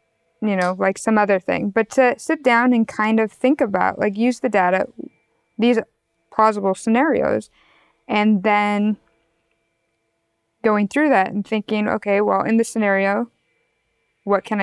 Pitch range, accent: 185-225 Hz, American